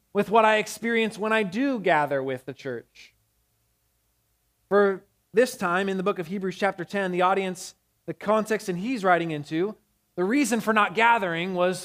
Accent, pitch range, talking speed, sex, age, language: American, 170-235 Hz, 175 wpm, male, 20-39, English